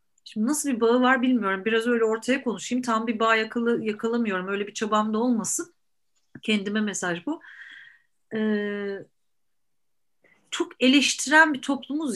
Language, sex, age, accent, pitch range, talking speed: Turkish, female, 40-59, native, 205-260 Hz, 140 wpm